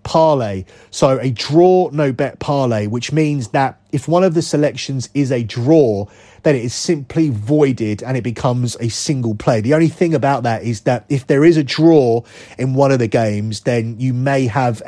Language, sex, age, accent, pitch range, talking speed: English, male, 30-49, British, 110-140 Hz, 200 wpm